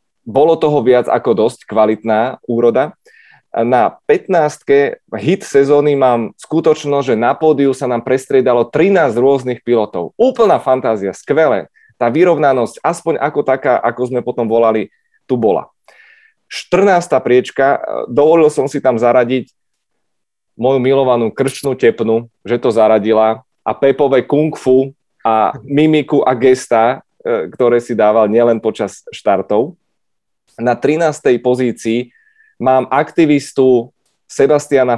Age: 20-39